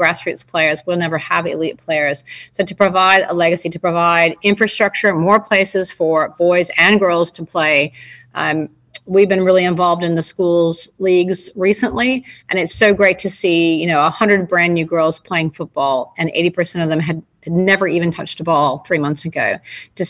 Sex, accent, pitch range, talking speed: female, American, 165-195 Hz, 180 wpm